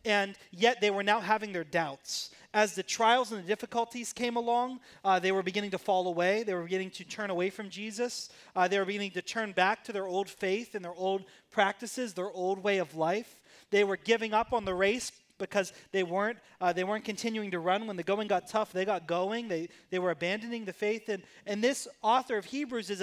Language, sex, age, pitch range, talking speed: English, male, 30-49, 190-240 Hz, 230 wpm